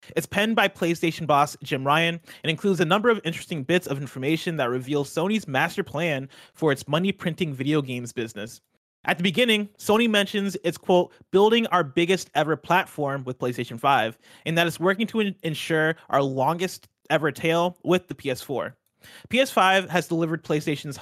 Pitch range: 135-185 Hz